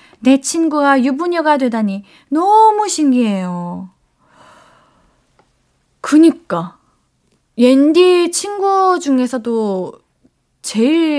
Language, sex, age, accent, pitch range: Korean, female, 20-39, native, 215-315 Hz